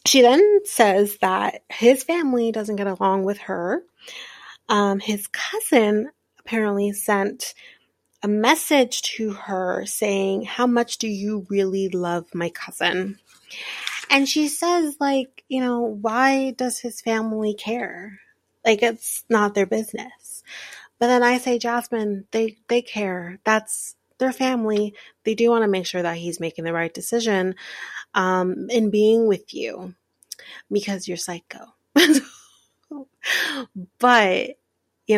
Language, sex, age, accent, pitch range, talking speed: English, female, 30-49, American, 200-245 Hz, 135 wpm